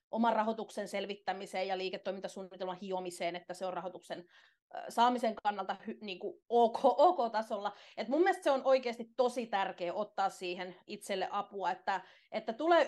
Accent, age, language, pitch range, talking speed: native, 30-49, Finnish, 195-255 Hz, 125 wpm